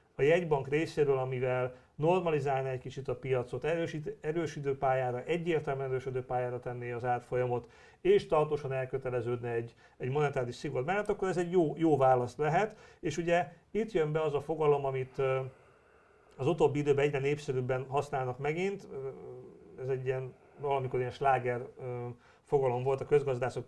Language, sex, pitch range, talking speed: Hungarian, male, 125-160 Hz, 150 wpm